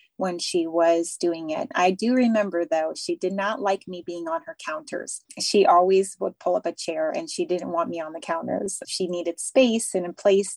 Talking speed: 220 wpm